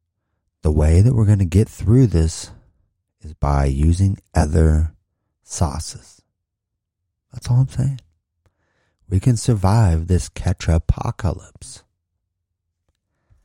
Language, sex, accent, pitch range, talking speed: English, male, American, 85-105 Hz, 105 wpm